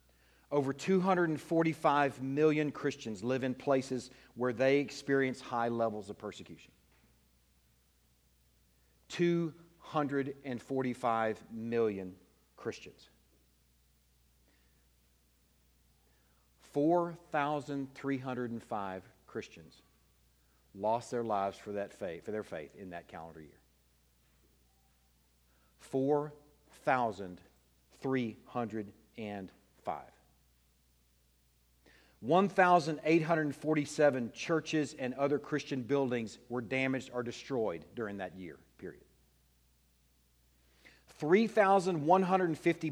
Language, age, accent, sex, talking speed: English, 50-69, American, male, 65 wpm